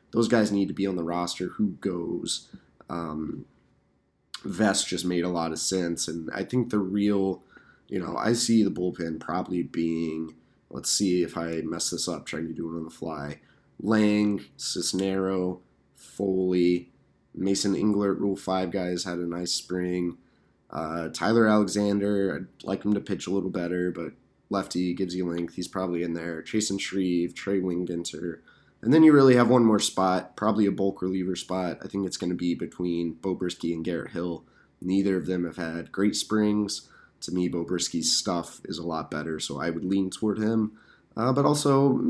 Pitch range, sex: 85-105 Hz, male